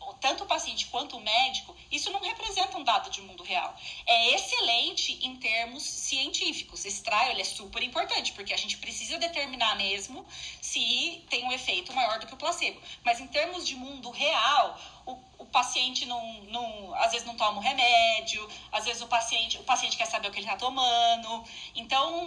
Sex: female